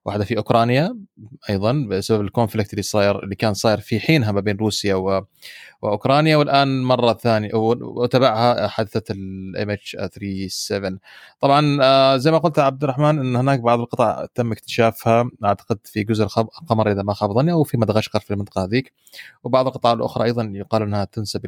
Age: 30-49